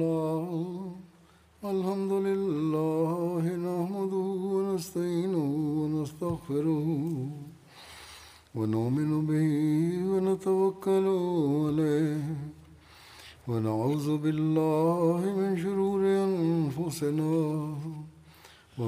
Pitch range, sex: 150-190 Hz, male